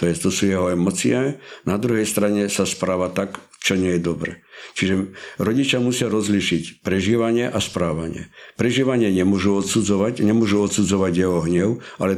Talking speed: 145 wpm